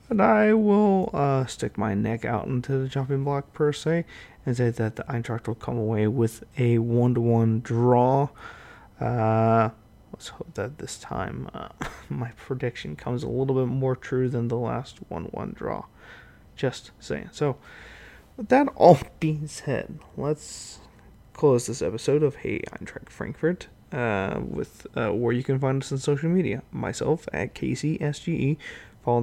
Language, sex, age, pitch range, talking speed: English, male, 20-39, 115-140 Hz, 160 wpm